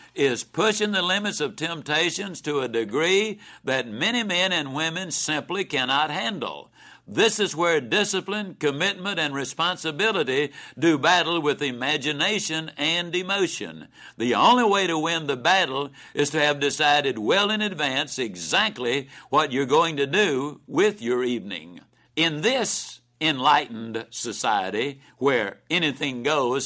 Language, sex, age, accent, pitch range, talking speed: English, male, 60-79, American, 140-180 Hz, 135 wpm